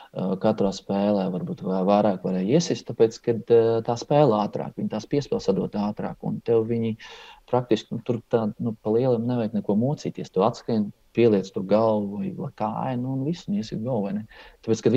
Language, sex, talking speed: English, male, 170 wpm